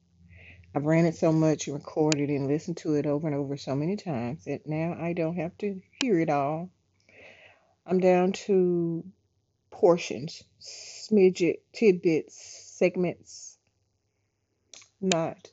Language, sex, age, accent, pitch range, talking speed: English, female, 40-59, American, 130-175 Hz, 130 wpm